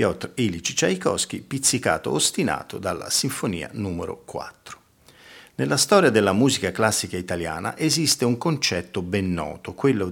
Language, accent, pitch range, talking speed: Italian, native, 95-135 Hz, 120 wpm